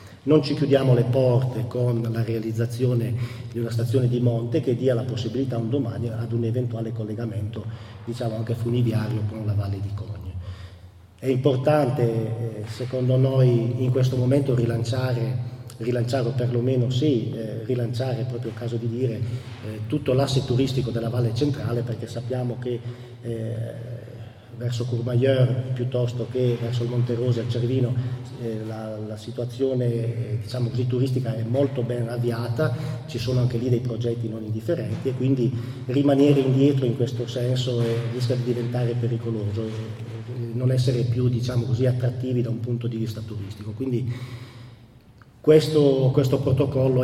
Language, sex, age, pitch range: Italian, male, 40-59, 115-130 Hz